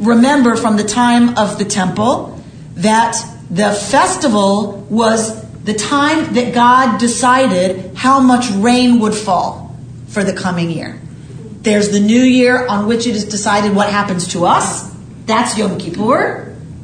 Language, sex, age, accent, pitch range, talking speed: English, female, 40-59, American, 185-250 Hz, 145 wpm